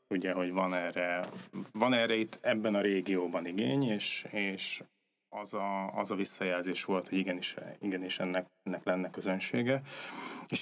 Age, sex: 20-39, male